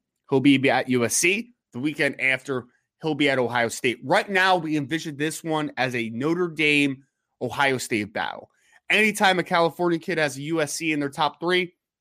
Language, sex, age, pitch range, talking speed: English, male, 20-39, 135-170 Hz, 175 wpm